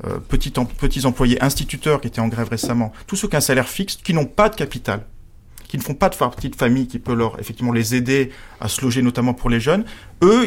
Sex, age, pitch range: male, 40-59, 115-140 Hz